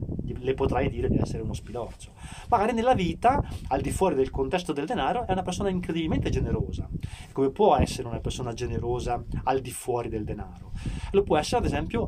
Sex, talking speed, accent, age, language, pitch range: male, 190 wpm, native, 30-49, Italian, 120-170 Hz